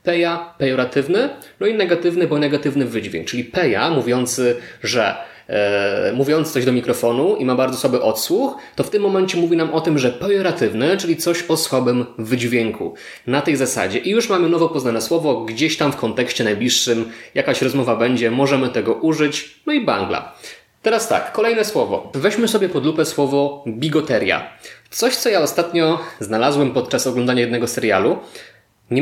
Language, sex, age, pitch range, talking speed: Polish, male, 20-39, 120-165 Hz, 165 wpm